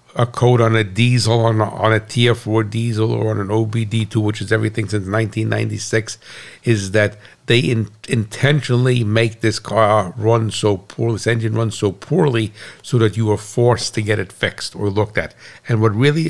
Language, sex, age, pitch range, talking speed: English, male, 60-79, 110-120 Hz, 190 wpm